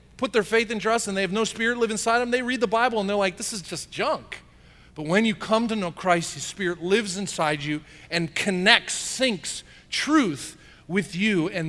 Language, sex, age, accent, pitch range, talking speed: English, male, 40-59, American, 150-225 Hz, 220 wpm